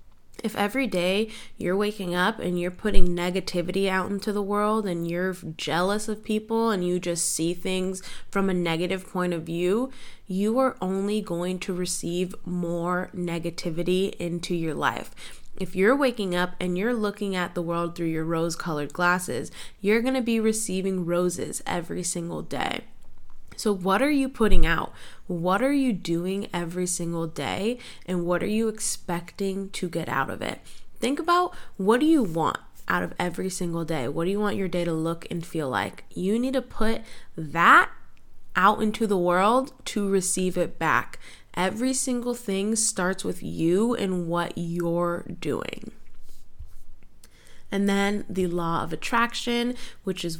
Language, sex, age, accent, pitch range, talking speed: English, female, 10-29, American, 170-210 Hz, 165 wpm